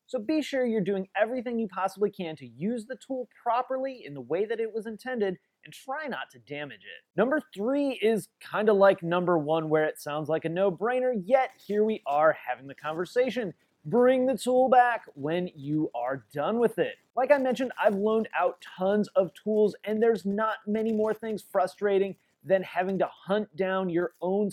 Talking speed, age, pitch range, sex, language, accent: 200 wpm, 30-49, 170-230 Hz, male, English, American